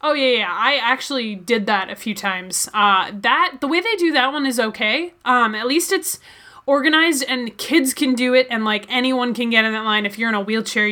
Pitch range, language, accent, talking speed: 205-255 Hz, English, American, 235 wpm